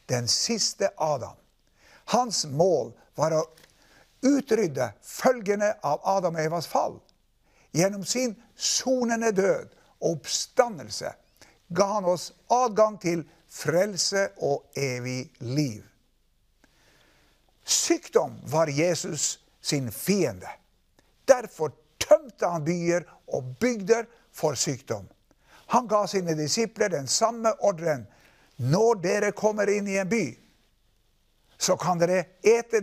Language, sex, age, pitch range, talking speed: English, male, 60-79, 145-220 Hz, 105 wpm